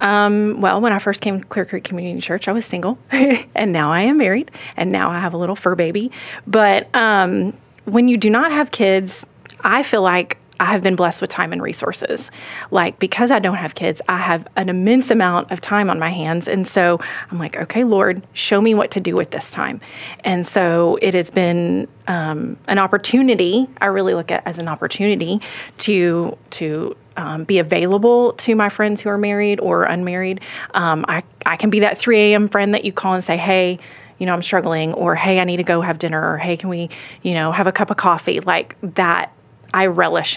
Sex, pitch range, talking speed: female, 170-205 Hz, 215 wpm